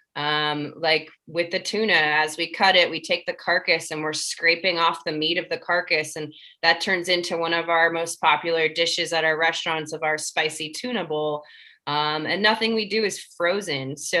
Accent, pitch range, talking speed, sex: American, 155-185 Hz, 205 wpm, female